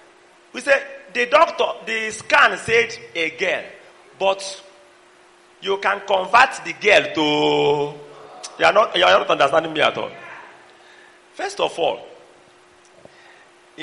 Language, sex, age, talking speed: English, male, 40-59, 130 wpm